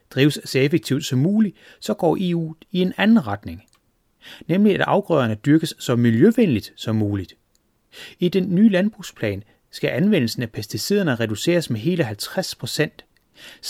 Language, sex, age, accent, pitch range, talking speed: Danish, male, 30-49, native, 115-175 Hz, 140 wpm